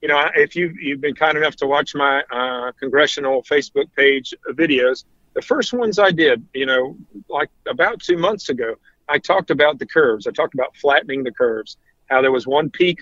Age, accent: 50-69, American